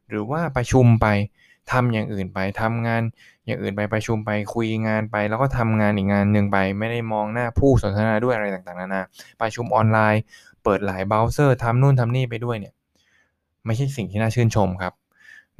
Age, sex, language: 20-39, male, Thai